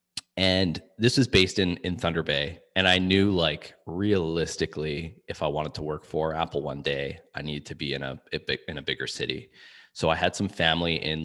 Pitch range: 75-95 Hz